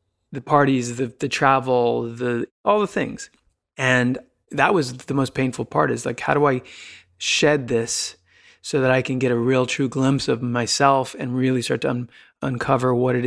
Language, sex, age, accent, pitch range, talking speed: English, male, 30-49, American, 120-140 Hz, 190 wpm